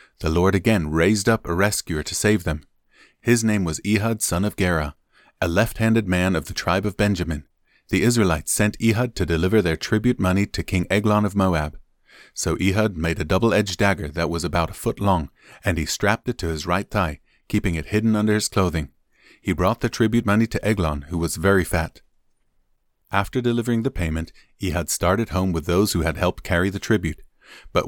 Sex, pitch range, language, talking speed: male, 85-105 Hz, English, 200 wpm